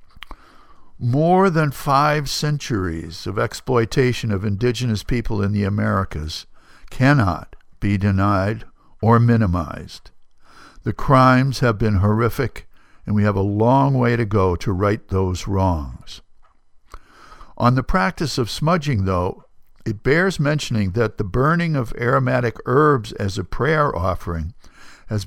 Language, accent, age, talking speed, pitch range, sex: English, American, 60-79, 130 wpm, 100-135 Hz, male